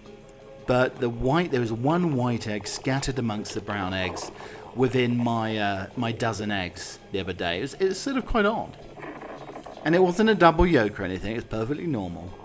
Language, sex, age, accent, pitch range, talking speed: English, male, 40-59, British, 110-145 Hz, 200 wpm